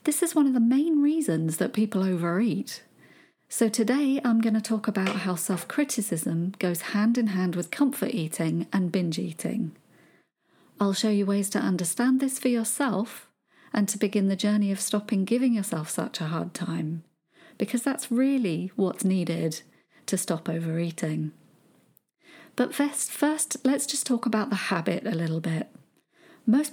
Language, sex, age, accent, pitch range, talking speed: English, female, 40-59, British, 180-250 Hz, 160 wpm